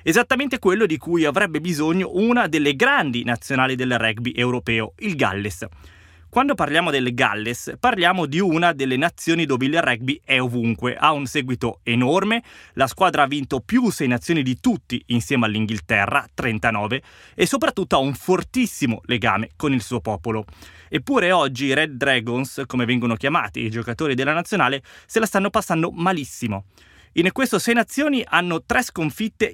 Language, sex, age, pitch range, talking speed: Italian, male, 20-39, 115-180 Hz, 160 wpm